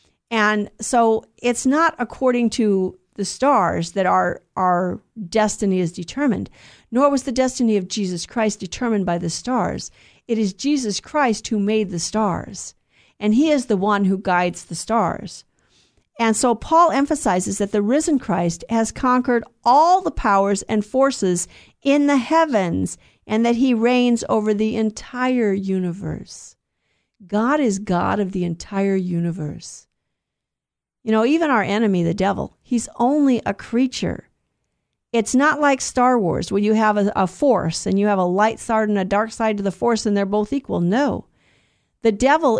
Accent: American